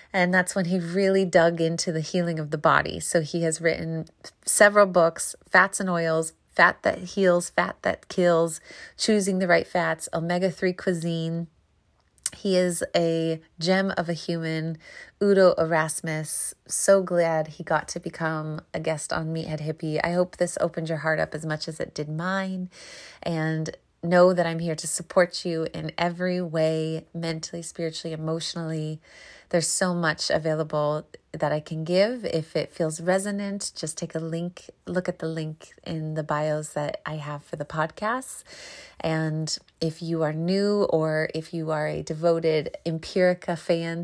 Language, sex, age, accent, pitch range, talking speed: English, female, 30-49, American, 160-175 Hz, 165 wpm